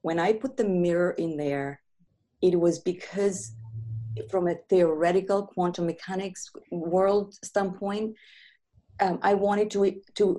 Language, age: English, 30-49